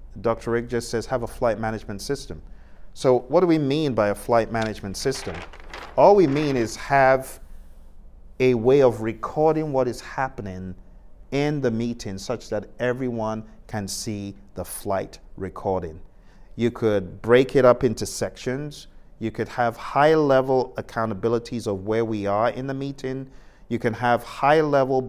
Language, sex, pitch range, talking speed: English, male, 100-130 Hz, 160 wpm